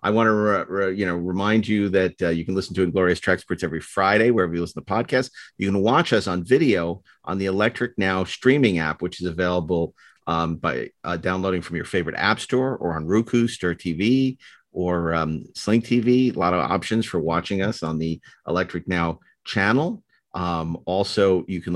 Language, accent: English, American